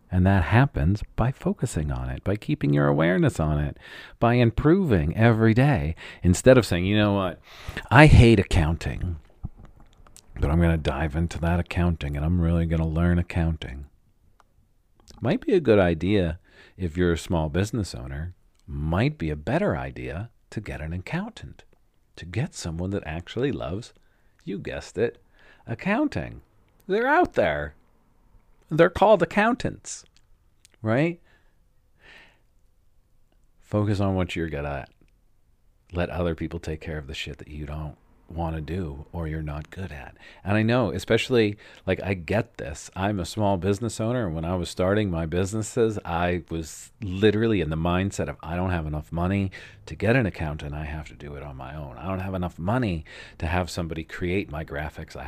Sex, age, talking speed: male, 50-69, 175 wpm